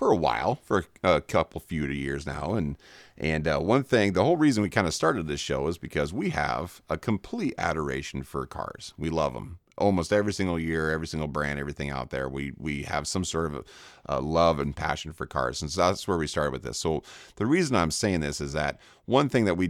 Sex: male